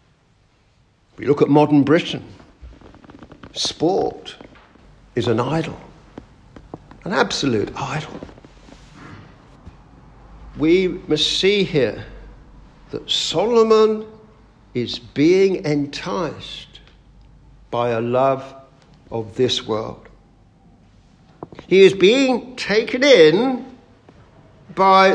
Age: 60-79